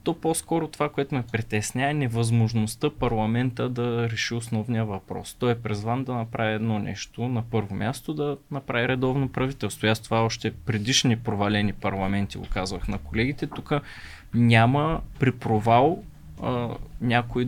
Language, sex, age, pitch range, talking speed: Bulgarian, male, 20-39, 110-130 Hz, 150 wpm